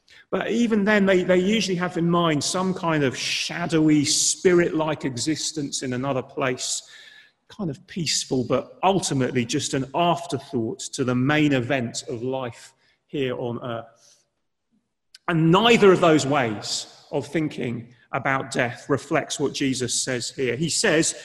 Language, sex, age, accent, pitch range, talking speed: English, male, 30-49, British, 135-185 Hz, 145 wpm